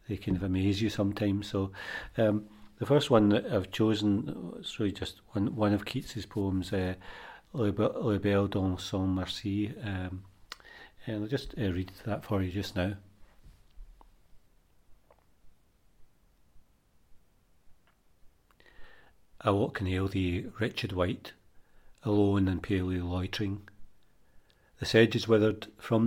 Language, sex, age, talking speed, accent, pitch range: English, male, 40-59, 130 wpm, British, 95-105 Hz